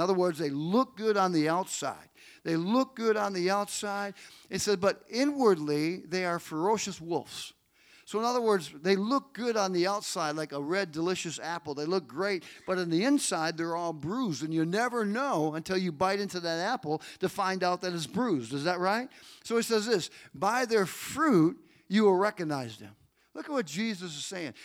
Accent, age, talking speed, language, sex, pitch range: American, 50-69, 205 wpm, English, male, 170-215 Hz